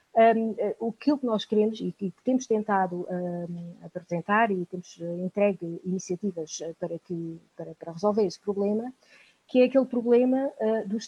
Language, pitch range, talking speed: Portuguese, 200-270 Hz, 130 wpm